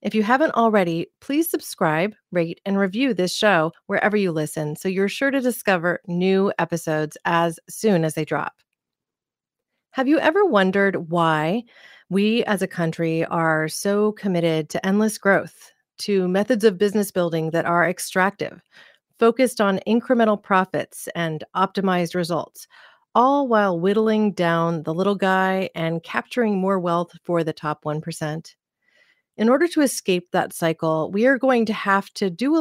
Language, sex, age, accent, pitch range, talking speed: English, female, 30-49, American, 170-225 Hz, 155 wpm